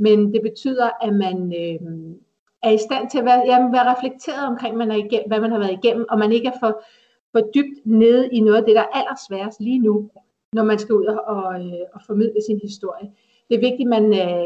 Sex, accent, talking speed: female, native, 235 wpm